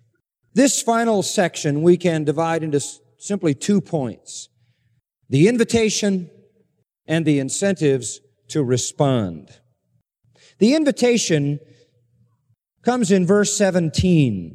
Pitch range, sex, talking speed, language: 140-195 Hz, male, 100 wpm, English